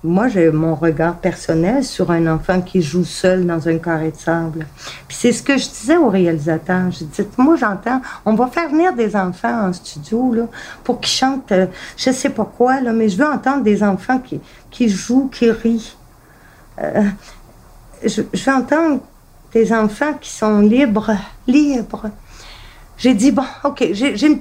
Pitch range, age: 185-270 Hz, 50-69